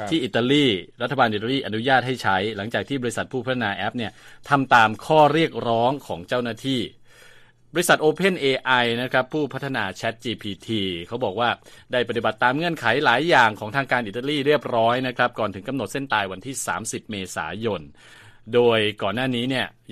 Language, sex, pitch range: Thai, male, 100-130 Hz